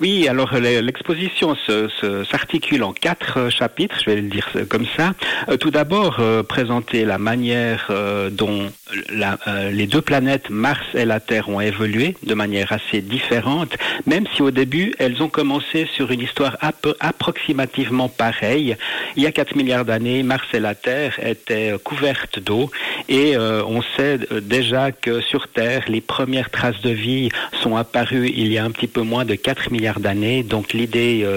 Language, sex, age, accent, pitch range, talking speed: French, male, 60-79, French, 110-130 Hz, 170 wpm